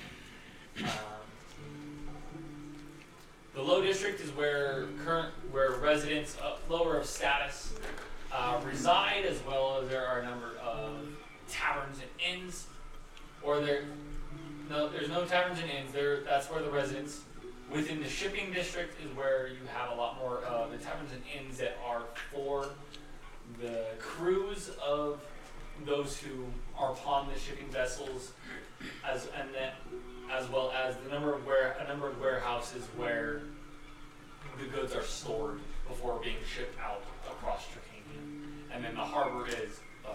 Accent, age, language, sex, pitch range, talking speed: American, 20-39, English, male, 130-150 Hz, 150 wpm